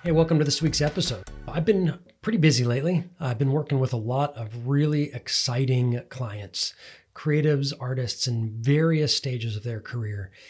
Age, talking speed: 30-49, 165 wpm